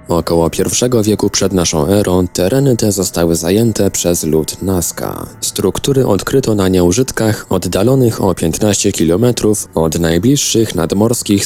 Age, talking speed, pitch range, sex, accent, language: 20-39, 125 wpm, 90-115 Hz, male, native, Polish